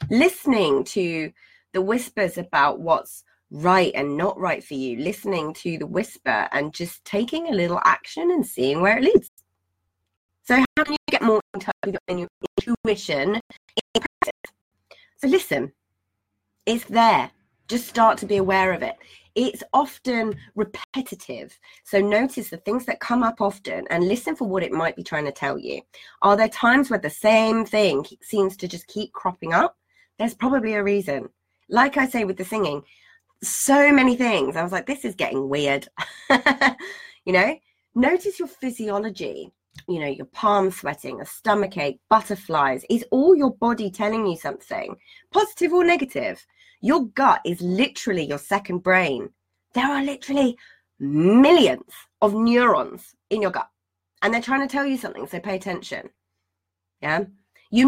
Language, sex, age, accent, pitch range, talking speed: English, female, 20-39, British, 170-255 Hz, 160 wpm